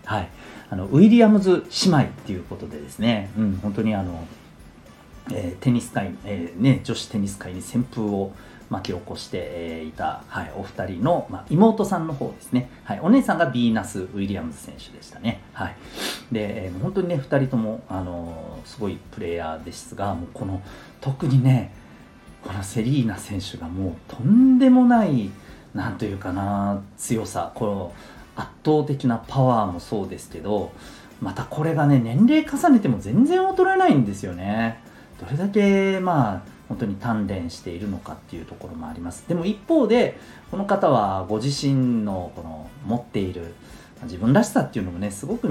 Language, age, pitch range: Japanese, 40-59, 95-140 Hz